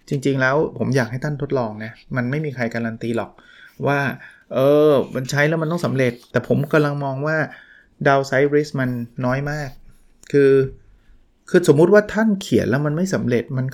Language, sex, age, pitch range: Thai, male, 20-39, 125-155 Hz